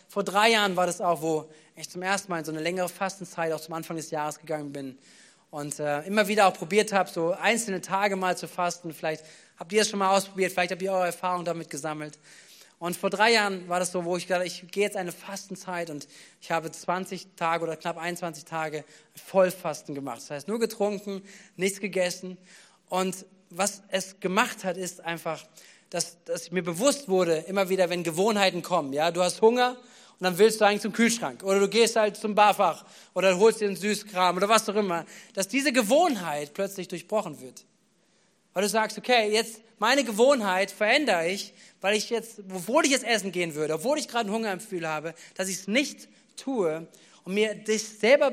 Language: German